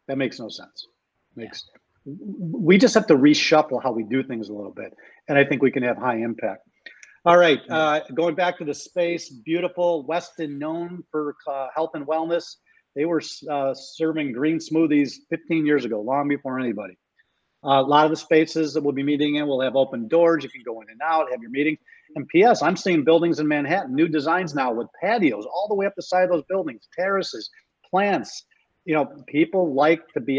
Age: 40-59